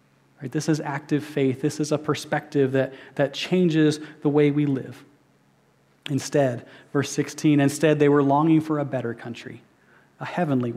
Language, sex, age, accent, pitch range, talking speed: English, male, 30-49, American, 135-155 Hz, 155 wpm